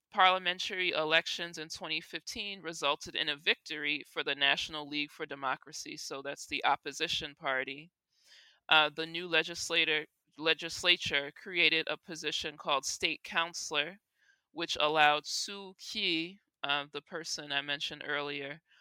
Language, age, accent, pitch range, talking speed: English, 20-39, American, 150-170 Hz, 130 wpm